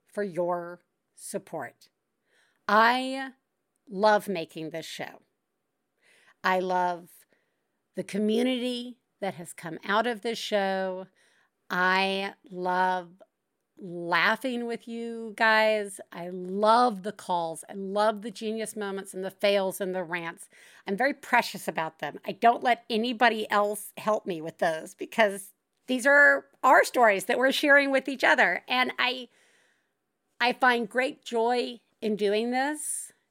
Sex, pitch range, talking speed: female, 195-240 Hz, 135 wpm